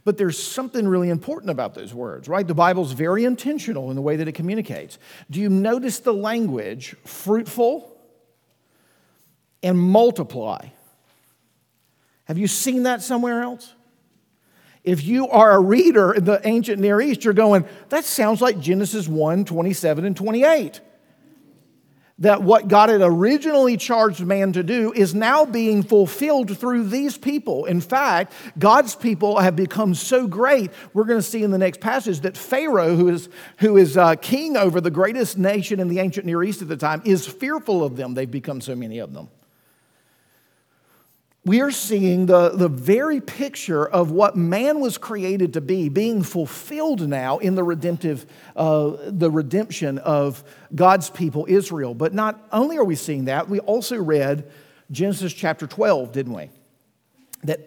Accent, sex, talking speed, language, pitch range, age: American, male, 165 wpm, English, 170-225 Hz, 50-69